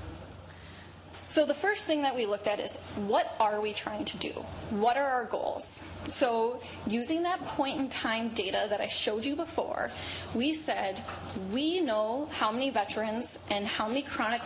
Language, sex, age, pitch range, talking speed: English, female, 10-29, 220-275 Hz, 175 wpm